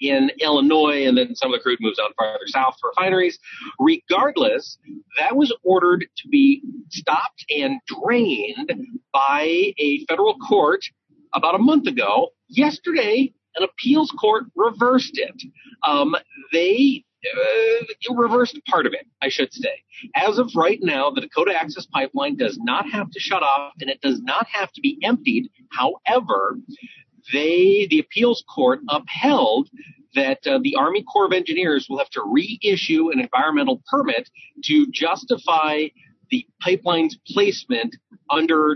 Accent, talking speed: American, 145 wpm